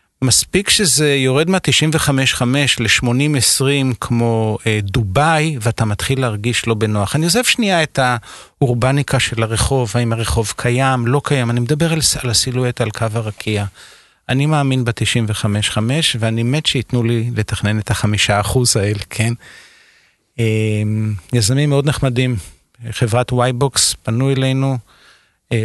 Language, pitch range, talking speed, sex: Hebrew, 110-135 Hz, 130 wpm, male